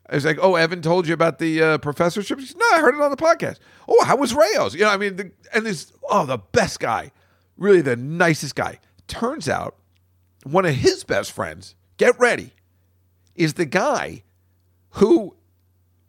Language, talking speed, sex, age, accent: English, 185 wpm, male, 50-69, American